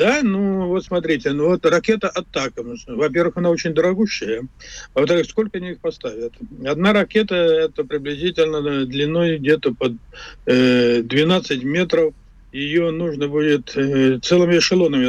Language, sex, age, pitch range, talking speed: Russian, male, 50-69, 145-195 Hz, 130 wpm